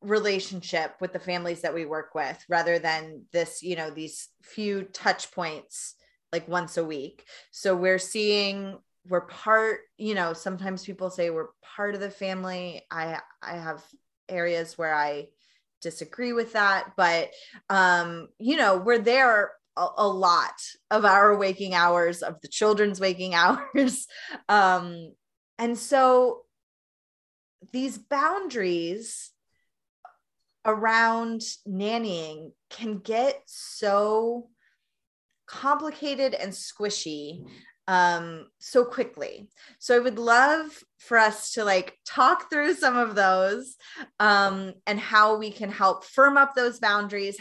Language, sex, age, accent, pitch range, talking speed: English, female, 20-39, American, 180-245 Hz, 130 wpm